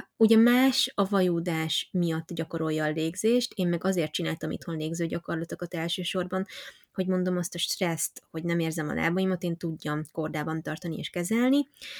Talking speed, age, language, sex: 160 wpm, 20-39, Hungarian, female